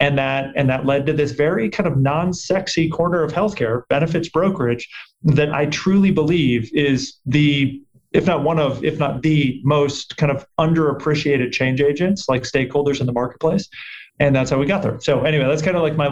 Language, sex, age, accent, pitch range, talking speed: English, male, 30-49, American, 130-160 Hz, 200 wpm